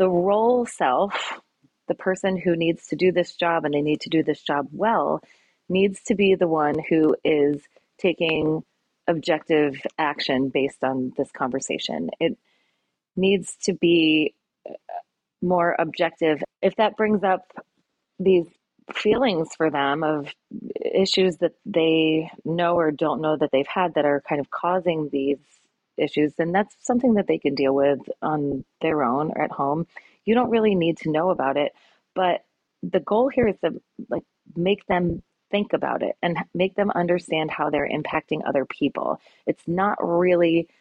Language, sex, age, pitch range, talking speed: English, female, 30-49, 155-195 Hz, 165 wpm